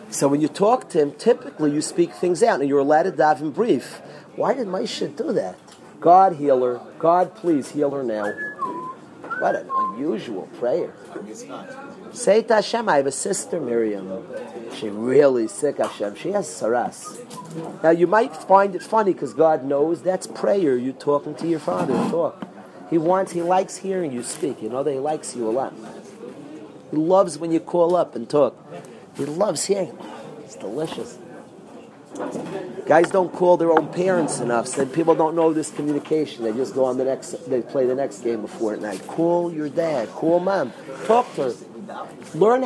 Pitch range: 145-195 Hz